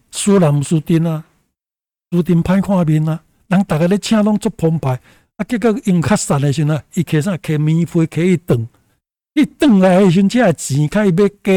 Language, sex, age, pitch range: Chinese, male, 60-79, 150-195 Hz